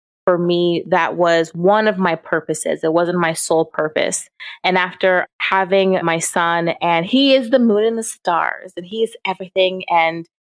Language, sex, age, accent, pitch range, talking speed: English, female, 20-39, American, 180-230 Hz, 180 wpm